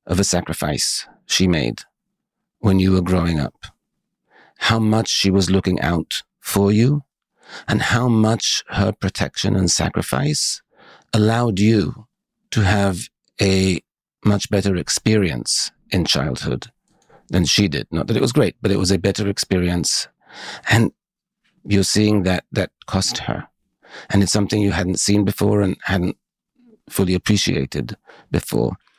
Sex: male